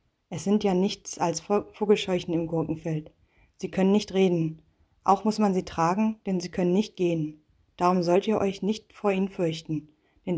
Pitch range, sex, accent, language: 165-205 Hz, female, German, German